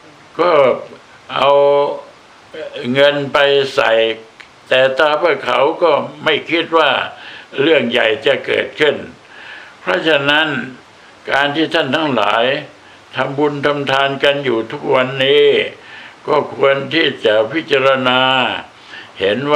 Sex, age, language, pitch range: male, 60-79, Thai, 130-150 Hz